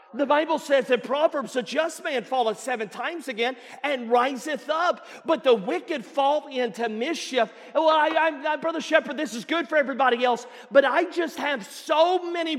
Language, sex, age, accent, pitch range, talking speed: English, male, 40-59, American, 255-315 Hz, 185 wpm